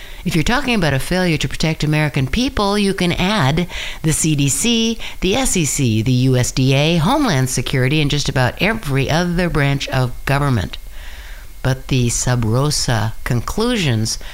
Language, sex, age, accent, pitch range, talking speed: English, female, 60-79, American, 115-175 Hz, 140 wpm